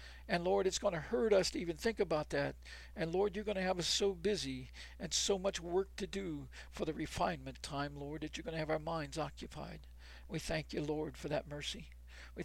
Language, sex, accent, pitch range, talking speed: English, male, American, 125-175 Hz, 230 wpm